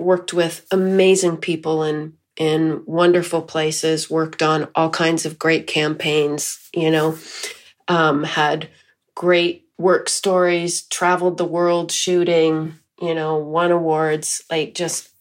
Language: English